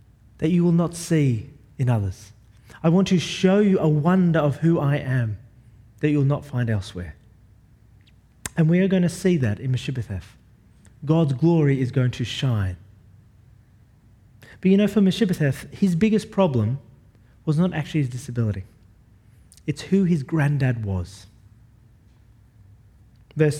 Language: English